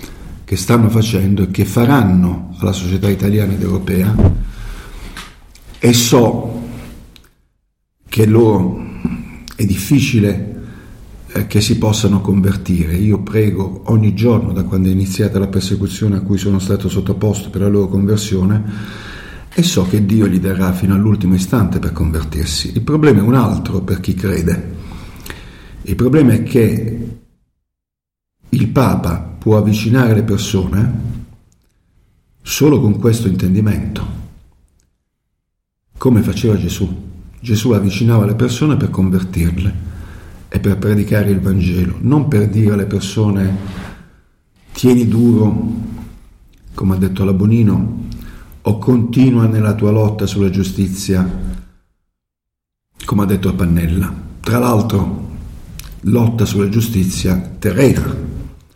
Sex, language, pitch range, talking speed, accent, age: male, Italian, 90-110 Hz, 115 wpm, native, 50-69